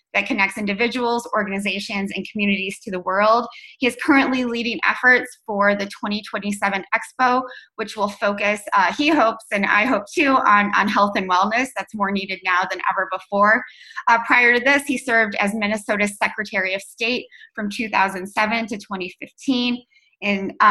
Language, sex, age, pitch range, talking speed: English, female, 20-39, 195-245 Hz, 155 wpm